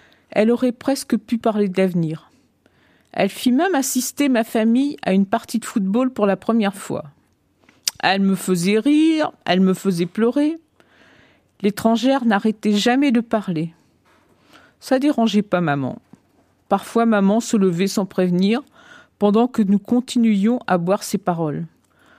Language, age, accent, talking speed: French, 50-69, French, 145 wpm